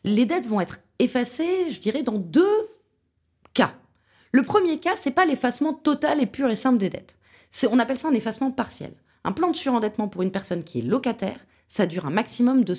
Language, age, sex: French, 30-49, female